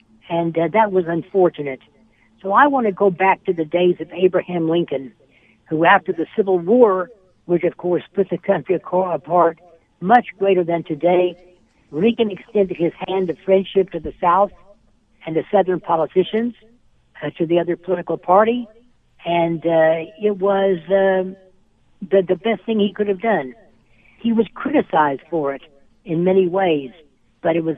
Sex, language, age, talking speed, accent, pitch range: female, English, 60-79, 165 wpm, American, 165-200 Hz